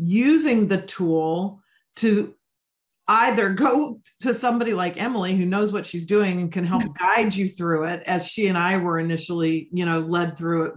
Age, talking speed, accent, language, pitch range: 40-59, 185 wpm, American, English, 180-235 Hz